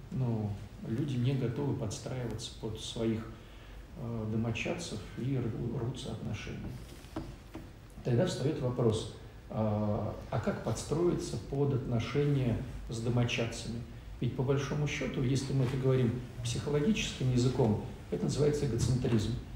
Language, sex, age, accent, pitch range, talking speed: Russian, male, 50-69, native, 115-135 Hz, 105 wpm